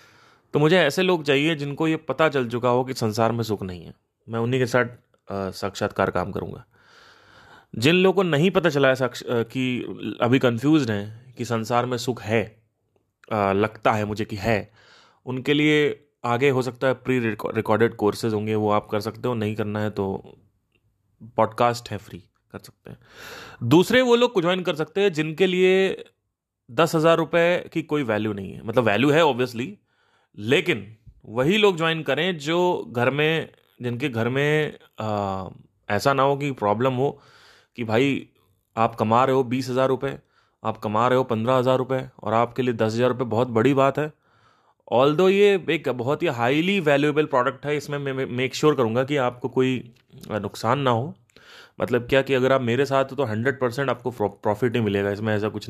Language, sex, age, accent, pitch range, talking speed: Hindi, male, 30-49, native, 110-145 Hz, 185 wpm